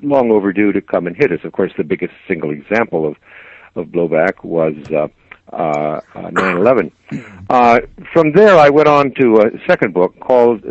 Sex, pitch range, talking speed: male, 90-120 Hz, 170 wpm